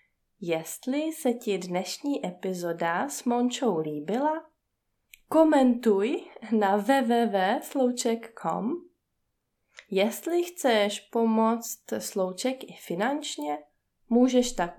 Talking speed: 75 wpm